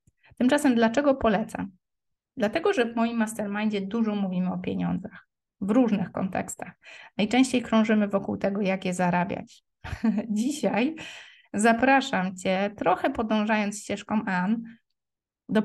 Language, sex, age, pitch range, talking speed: Polish, female, 20-39, 190-230 Hz, 120 wpm